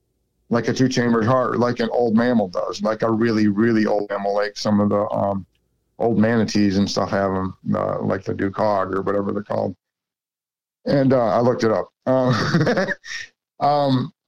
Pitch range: 105-120 Hz